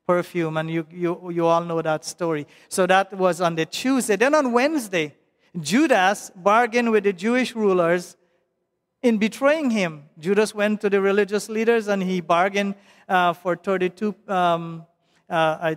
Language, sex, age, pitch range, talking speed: English, male, 50-69, 180-230 Hz, 160 wpm